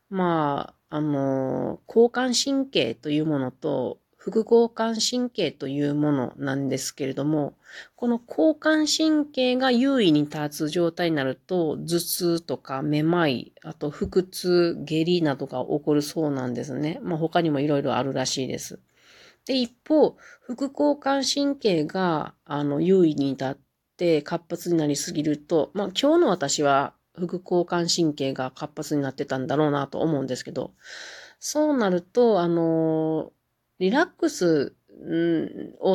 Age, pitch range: 40-59, 145-205 Hz